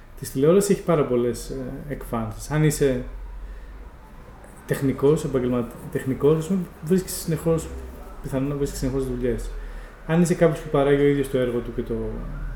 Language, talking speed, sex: Greek, 135 wpm, male